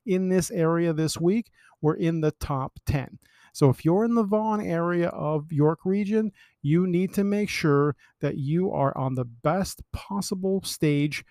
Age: 50-69